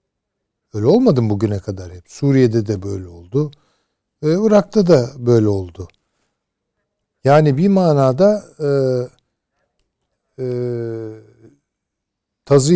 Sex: male